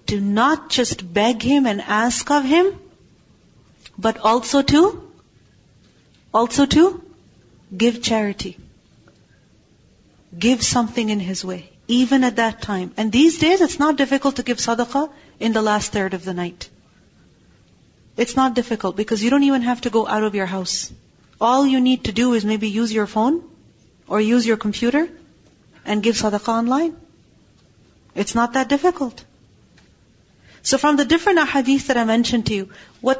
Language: English